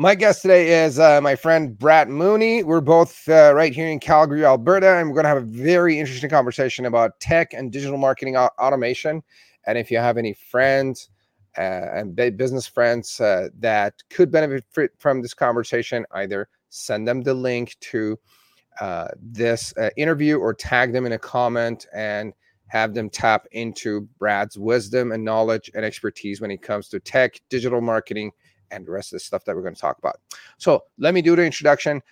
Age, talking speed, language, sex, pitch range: 30-49, 185 wpm, English, male, 115-150 Hz